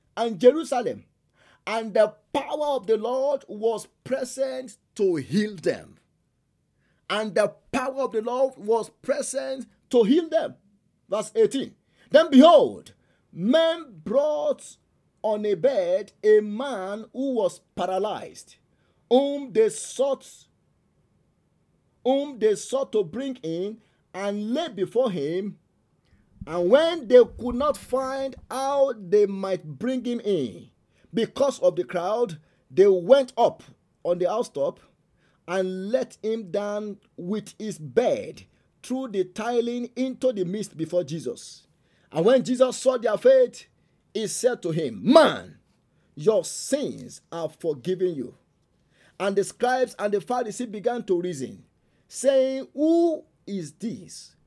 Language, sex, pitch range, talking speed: English, male, 195-270 Hz, 130 wpm